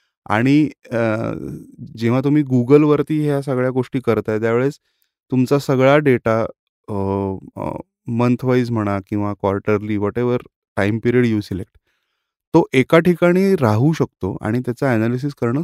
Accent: native